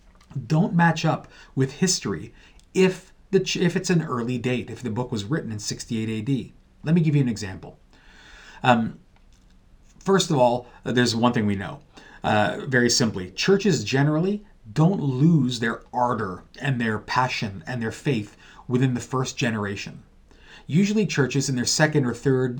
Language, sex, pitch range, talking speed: English, male, 110-145 Hz, 160 wpm